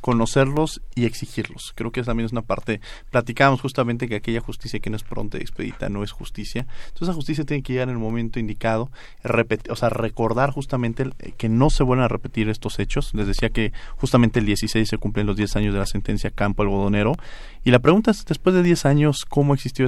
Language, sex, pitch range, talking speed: Spanish, male, 110-130 Hz, 215 wpm